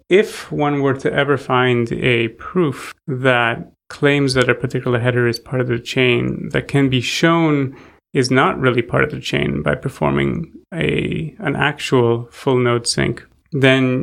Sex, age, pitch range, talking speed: male, 30-49, 125-145 Hz, 165 wpm